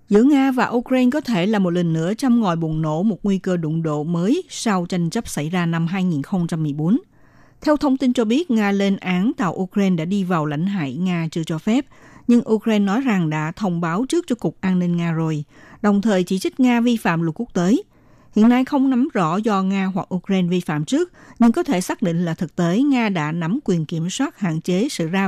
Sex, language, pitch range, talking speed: female, Vietnamese, 175-235 Hz, 235 wpm